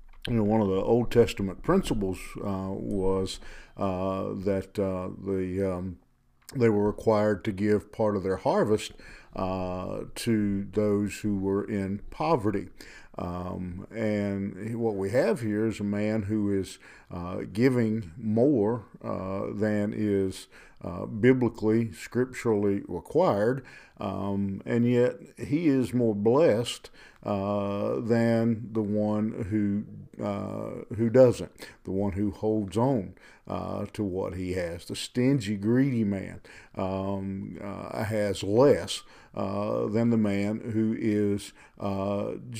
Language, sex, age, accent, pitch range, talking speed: English, male, 50-69, American, 95-115 Hz, 130 wpm